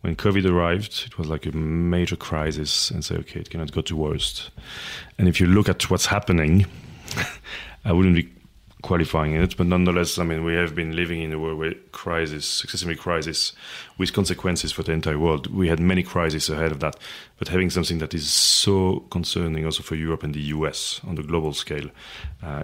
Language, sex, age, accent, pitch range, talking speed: English, male, 30-49, French, 80-90 Hz, 200 wpm